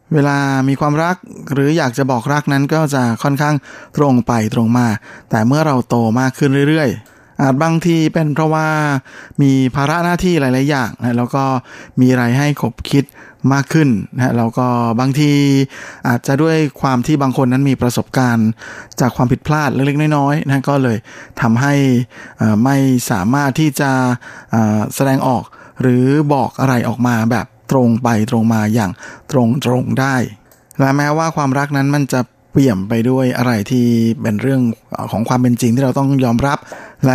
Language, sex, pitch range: Thai, male, 115-140 Hz